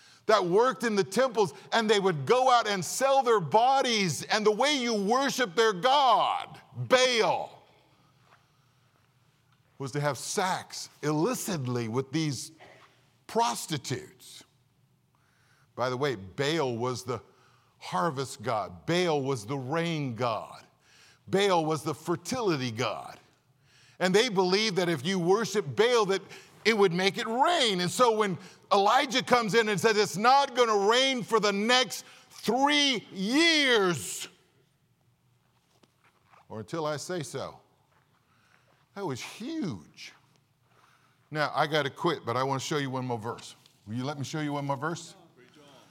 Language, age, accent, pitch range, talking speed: English, 50-69, American, 135-210 Hz, 145 wpm